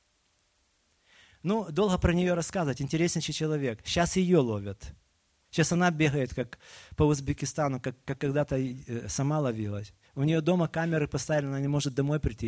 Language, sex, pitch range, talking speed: Russian, male, 105-155 Hz, 150 wpm